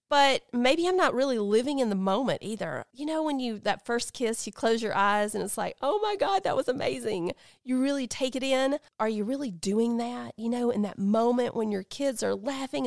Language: English